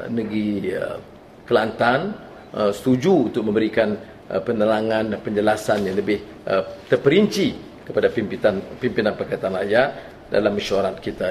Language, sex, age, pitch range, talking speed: English, male, 40-59, 135-210 Hz, 115 wpm